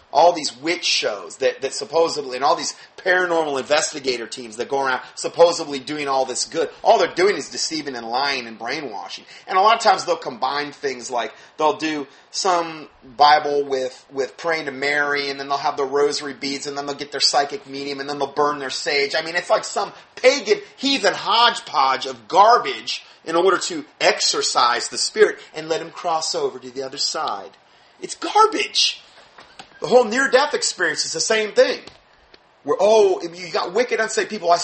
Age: 30-49